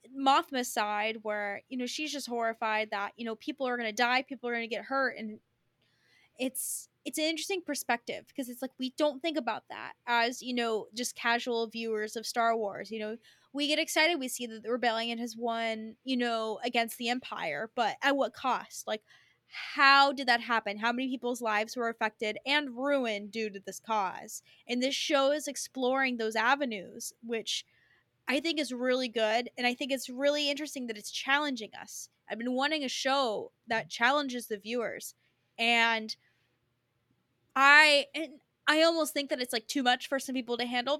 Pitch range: 225-285 Hz